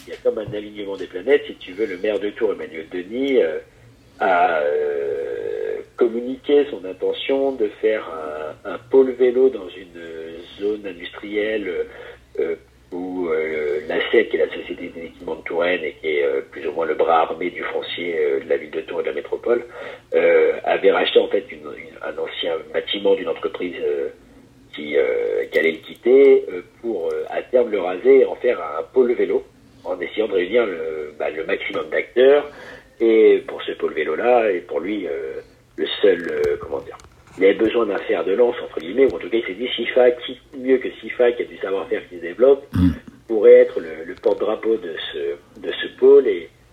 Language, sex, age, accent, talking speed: French, male, 50-69, French, 200 wpm